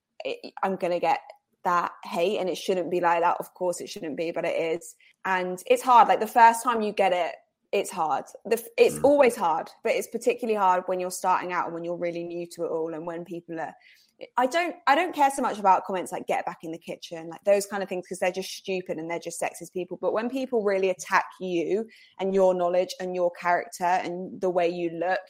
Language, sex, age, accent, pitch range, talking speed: English, female, 20-39, British, 170-210 Hz, 235 wpm